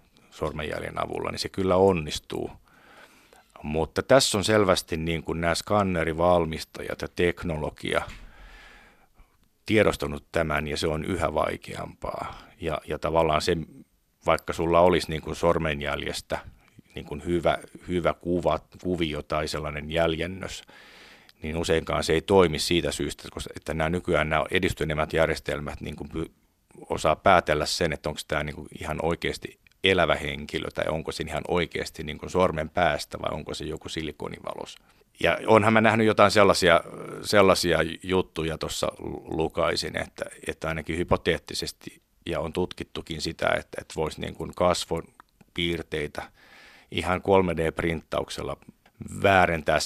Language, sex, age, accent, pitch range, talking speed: Finnish, male, 50-69, native, 80-90 Hz, 130 wpm